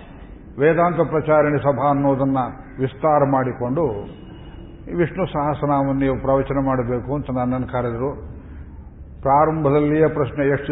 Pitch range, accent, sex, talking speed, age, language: 125-145 Hz, native, male, 95 wpm, 50-69, Kannada